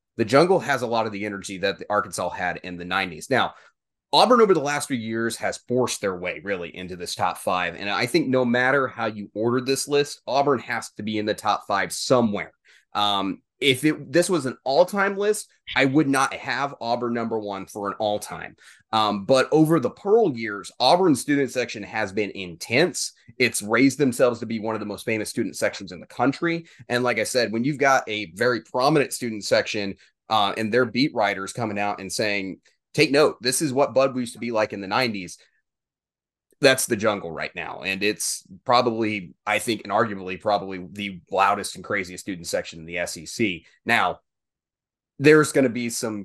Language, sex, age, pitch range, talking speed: English, male, 30-49, 100-130 Hz, 200 wpm